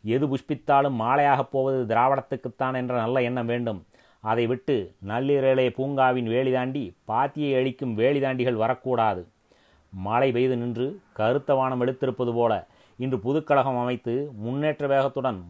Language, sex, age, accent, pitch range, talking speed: Tamil, male, 30-49, native, 115-135 Hz, 120 wpm